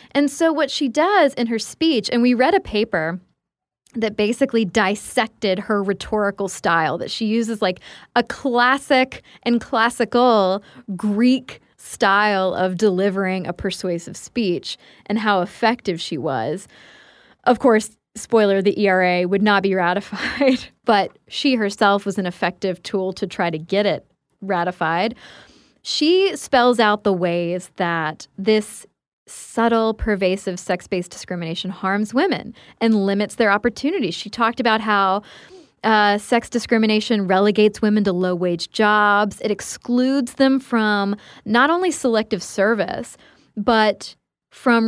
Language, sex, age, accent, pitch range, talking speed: English, female, 10-29, American, 195-245 Hz, 135 wpm